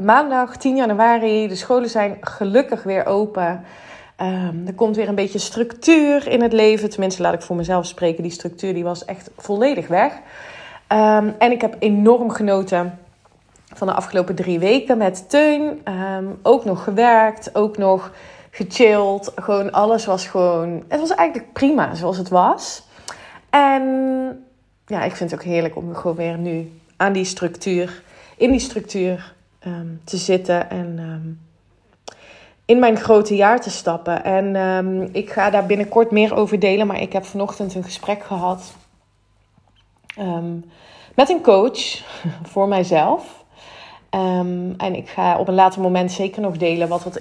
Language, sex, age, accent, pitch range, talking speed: Dutch, female, 30-49, Dutch, 175-220 Hz, 155 wpm